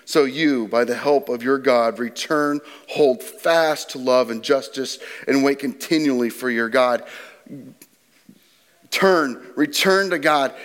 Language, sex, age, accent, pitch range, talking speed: English, male, 40-59, American, 150-205 Hz, 140 wpm